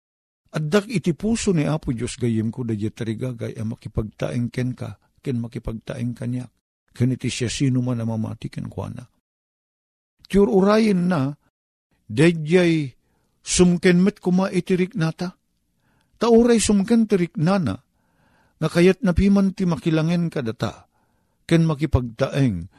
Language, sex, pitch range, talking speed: Filipino, male, 110-150 Hz, 110 wpm